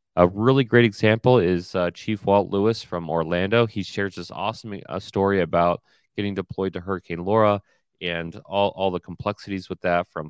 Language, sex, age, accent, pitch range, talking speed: English, male, 30-49, American, 85-105 Hz, 180 wpm